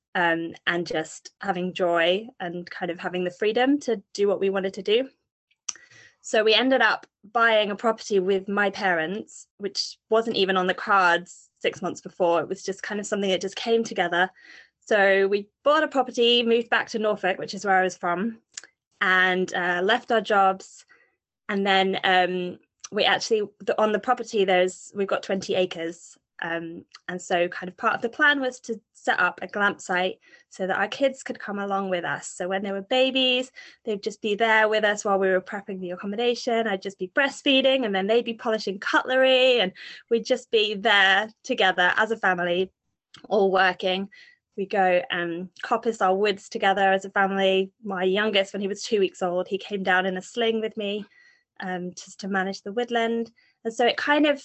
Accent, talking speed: British, 200 wpm